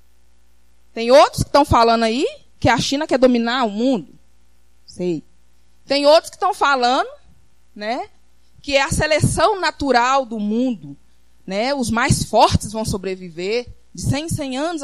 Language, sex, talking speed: Portuguese, female, 155 wpm